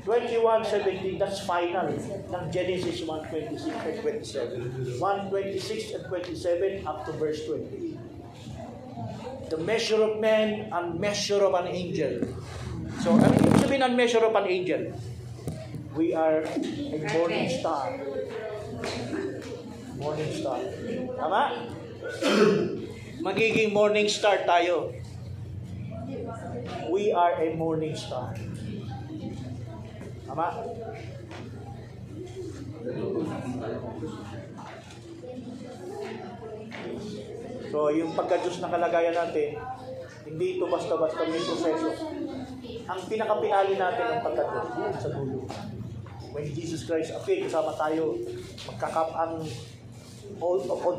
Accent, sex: native, male